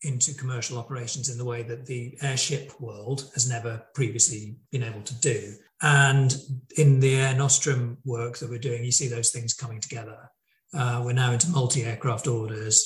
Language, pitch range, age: English, 120-140 Hz, 40-59